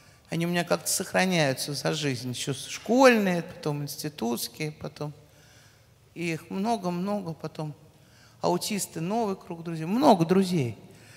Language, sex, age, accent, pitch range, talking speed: Russian, male, 50-69, native, 125-190 Hz, 115 wpm